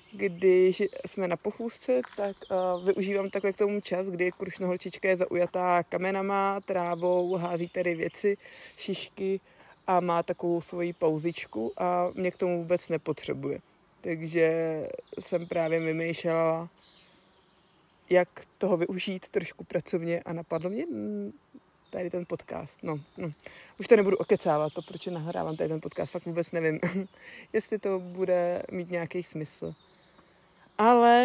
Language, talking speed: Czech, 135 wpm